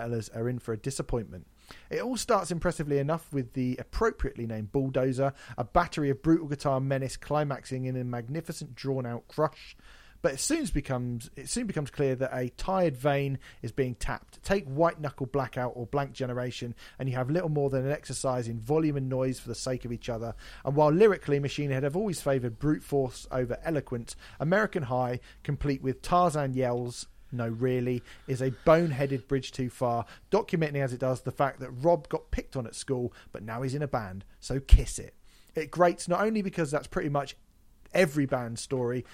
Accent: British